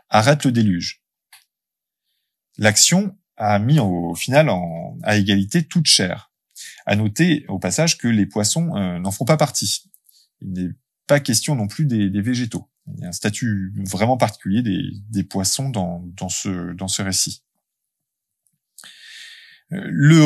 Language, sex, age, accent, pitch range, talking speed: French, male, 20-39, French, 100-145 Hz, 155 wpm